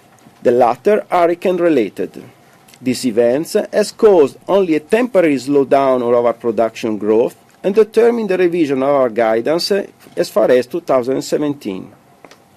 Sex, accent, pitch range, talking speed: male, native, 130-200 Hz, 130 wpm